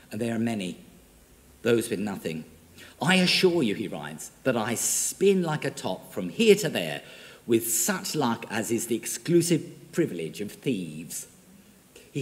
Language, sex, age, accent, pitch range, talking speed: English, male, 50-69, British, 125-170 Hz, 160 wpm